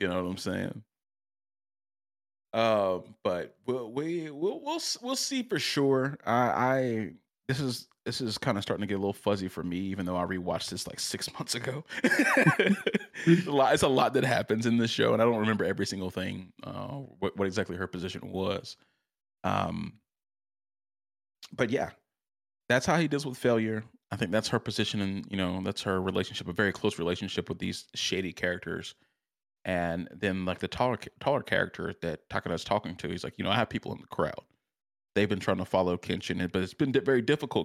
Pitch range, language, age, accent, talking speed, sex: 95-130 Hz, English, 30-49, American, 200 wpm, male